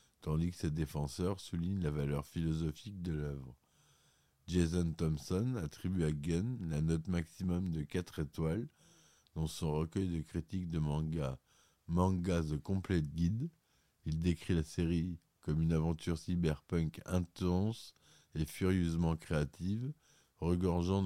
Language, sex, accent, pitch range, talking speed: French, male, French, 80-90 Hz, 125 wpm